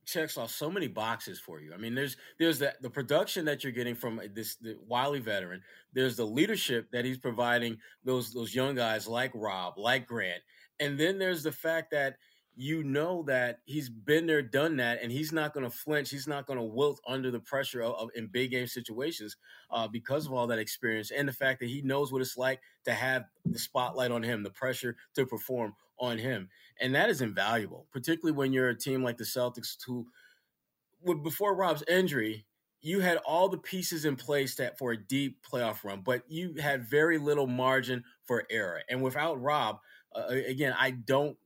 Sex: male